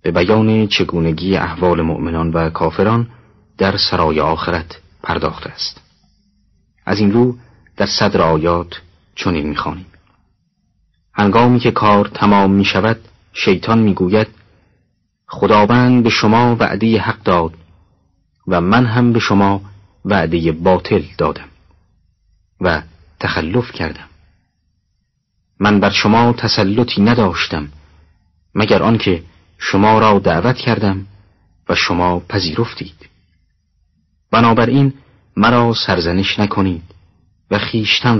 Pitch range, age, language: 85-105 Hz, 40-59, Persian